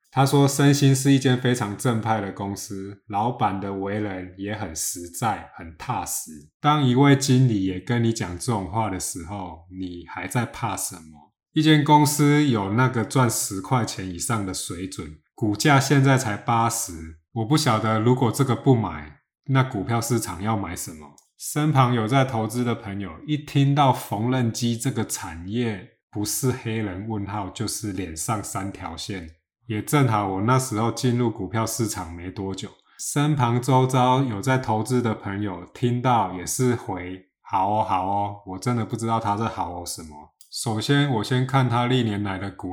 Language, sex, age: Chinese, male, 20-39